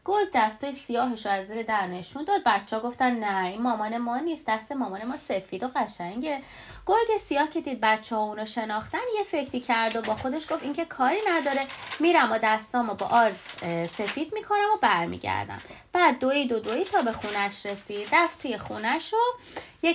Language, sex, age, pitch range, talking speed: Persian, female, 30-49, 210-315 Hz, 175 wpm